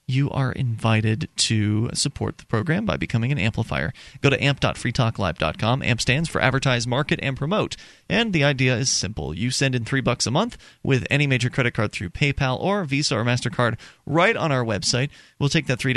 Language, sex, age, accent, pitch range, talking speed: English, male, 30-49, American, 115-145 Hz, 195 wpm